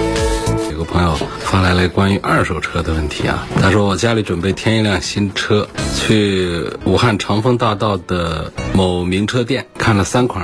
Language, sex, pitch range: Chinese, male, 90-115 Hz